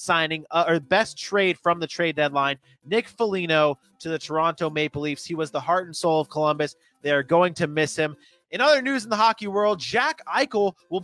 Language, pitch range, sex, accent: English, 165-220 Hz, male, American